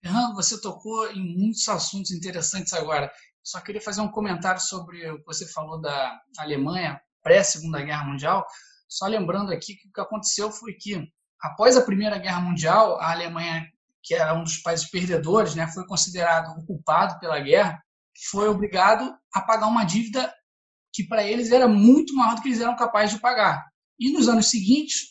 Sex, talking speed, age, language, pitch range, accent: male, 175 wpm, 20-39, Portuguese, 195-255 Hz, Brazilian